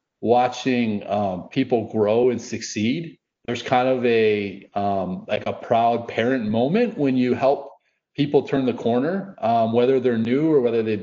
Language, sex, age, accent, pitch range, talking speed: English, male, 30-49, American, 105-130 Hz, 165 wpm